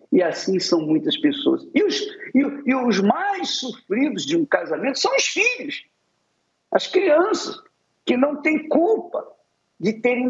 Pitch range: 230-330 Hz